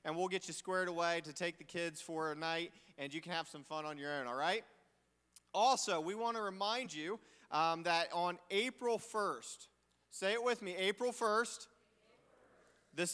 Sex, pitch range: male, 175-215 Hz